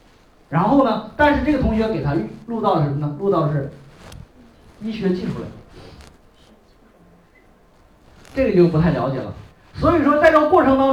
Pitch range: 160-265 Hz